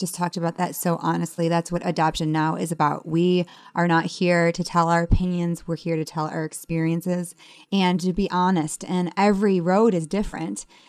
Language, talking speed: English, 195 wpm